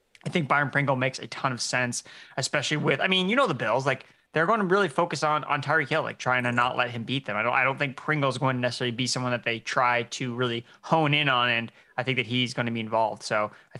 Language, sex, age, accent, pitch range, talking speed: English, male, 20-39, American, 120-145 Hz, 285 wpm